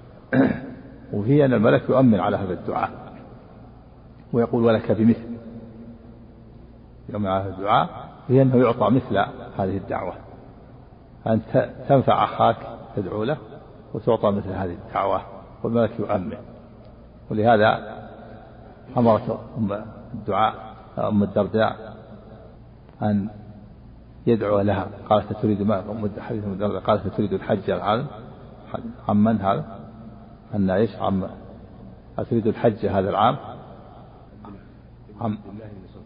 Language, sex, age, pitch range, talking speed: Arabic, male, 50-69, 105-115 Hz, 95 wpm